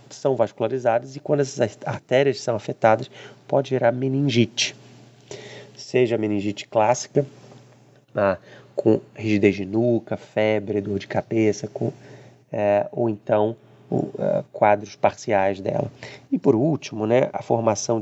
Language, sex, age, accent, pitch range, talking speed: Portuguese, male, 30-49, Brazilian, 105-130 Hz, 110 wpm